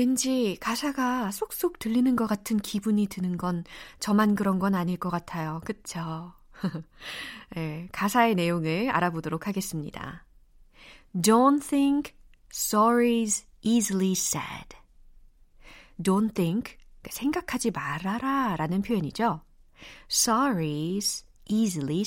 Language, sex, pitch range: Korean, female, 170-245 Hz